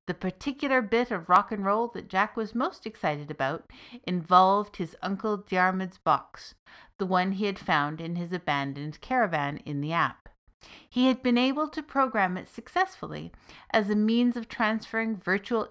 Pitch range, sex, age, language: 170-230 Hz, female, 50-69, English